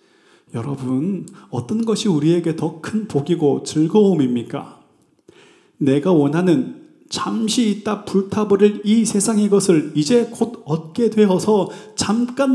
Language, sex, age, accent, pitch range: Korean, male, 30-49, native, 155-210 Hz